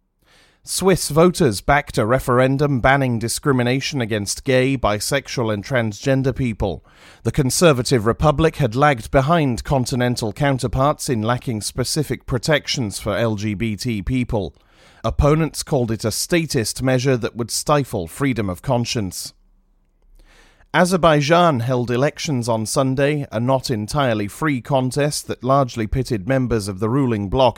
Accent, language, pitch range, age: British, English, 110-140 Hz, 40-59